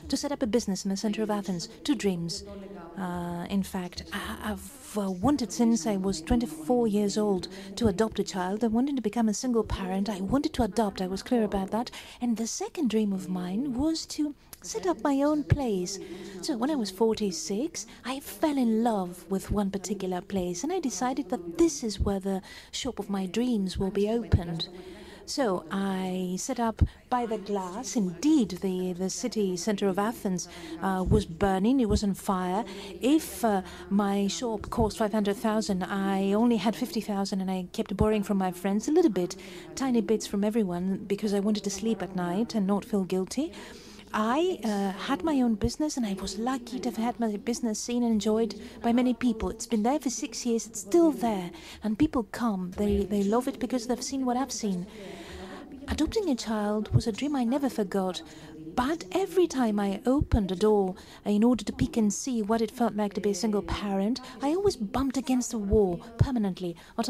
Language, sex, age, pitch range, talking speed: Greek, female, 50-69, 195-245 Hz, 200 wpm